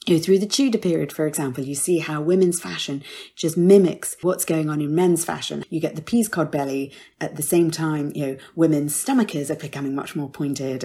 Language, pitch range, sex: English, 155-190 Hz, female